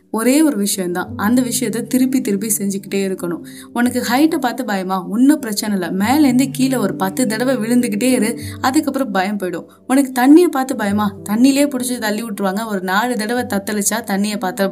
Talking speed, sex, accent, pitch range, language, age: 165 wpm, female, native, 190-250 Hz, Tamil, 20-39